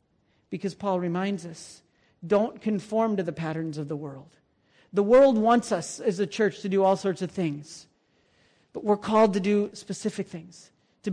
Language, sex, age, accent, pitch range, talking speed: English, male, 40-59, American, 185-225 Hz, 180 wpm